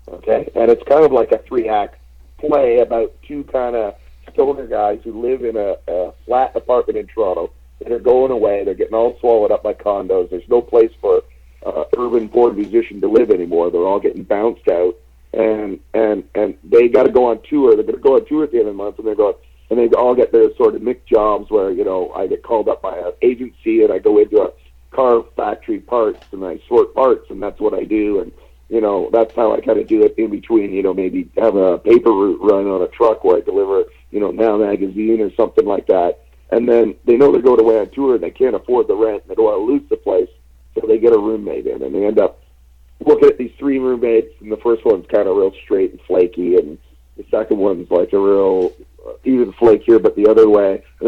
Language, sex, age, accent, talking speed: English, male, 50-69, American, 245 wpm